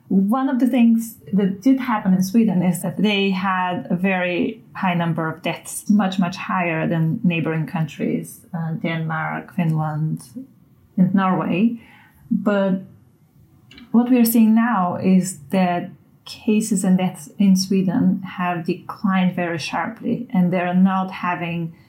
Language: English